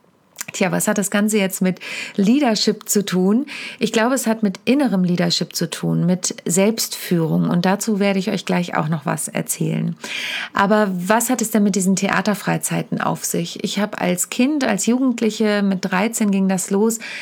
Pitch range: 185-220 Hz